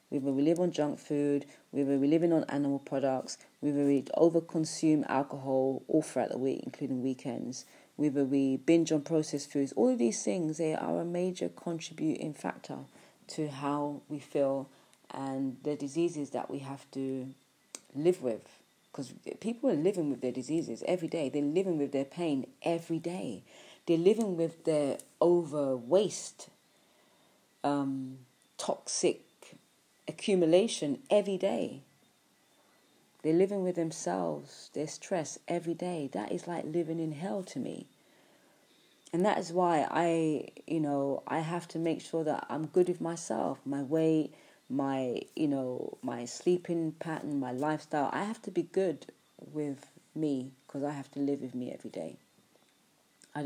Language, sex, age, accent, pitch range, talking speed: English, female, 30-49, British, 140-170 Hz, 155 wpm